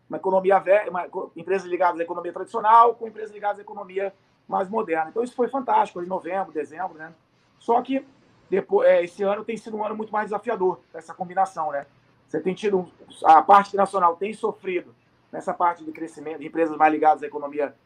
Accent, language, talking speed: Brazilian, Portuguese, 195 wpm